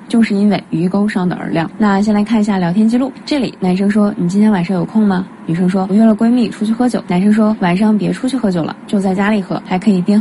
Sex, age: female, 20-39